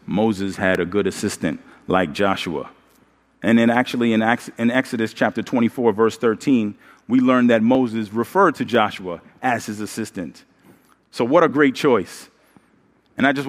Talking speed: 150 wpm